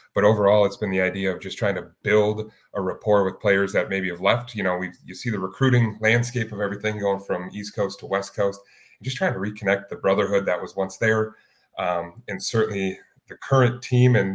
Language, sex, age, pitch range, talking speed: English, male, 30-49, 95-110 Hz, 225 wpm